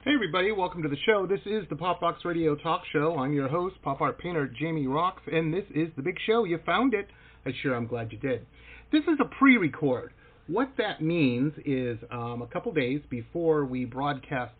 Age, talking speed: 40-59, 215 wpm